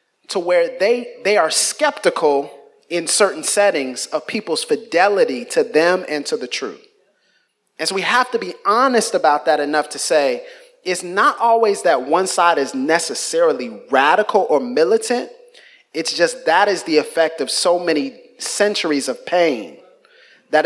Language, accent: English, American